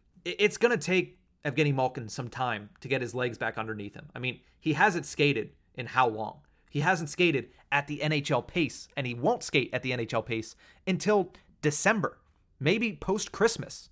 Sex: male